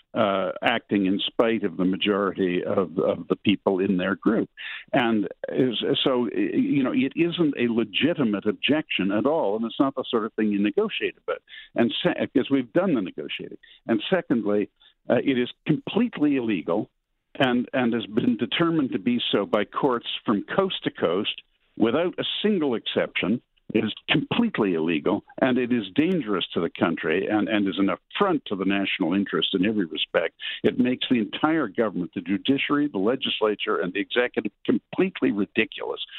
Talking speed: 175 wpm